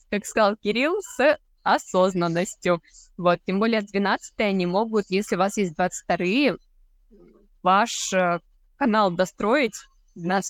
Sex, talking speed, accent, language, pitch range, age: female, 120 wpm, native, Russian, 185-230 Hz, 20-39